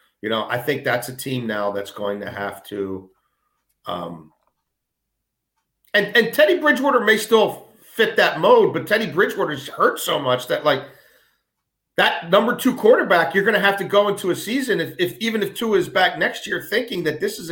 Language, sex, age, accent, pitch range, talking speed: English, male, 40-59, American, 130-190 Hz, 195 wpm